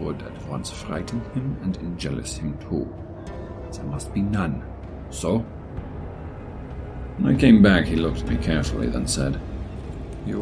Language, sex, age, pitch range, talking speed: English, male, 50-69, 80-110 Hz, 155 wpm